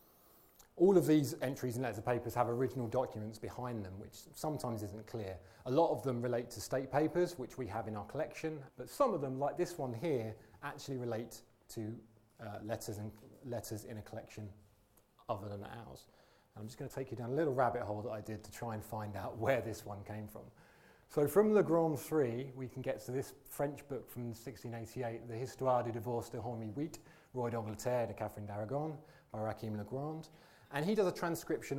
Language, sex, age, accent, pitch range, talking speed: English, male, 30-49, British, 110-130 Hz, 210 wpm